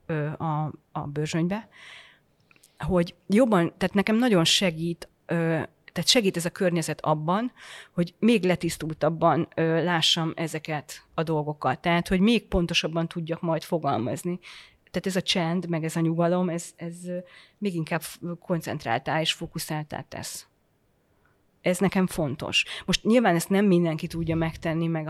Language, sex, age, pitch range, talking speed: Hungarian, female, 30-49, 160-190 Hz, 135 wpm